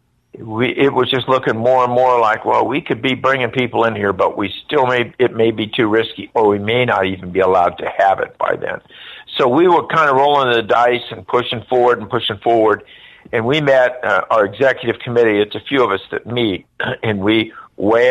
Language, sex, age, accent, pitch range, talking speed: English, male, 50-69, American, 100-125 Hz, 230 wpm